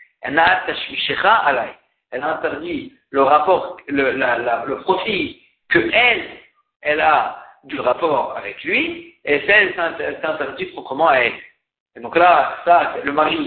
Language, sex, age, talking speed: French, male, 50-69, 130 wpm